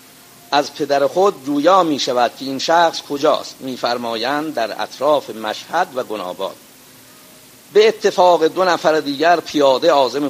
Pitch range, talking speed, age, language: 135-180 Hz, 135 wpm, 50-69, Persian